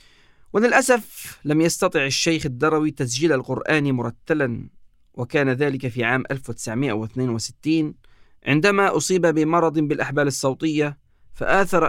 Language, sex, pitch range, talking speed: Arabic, male, 125-160 Hz, 95 wpm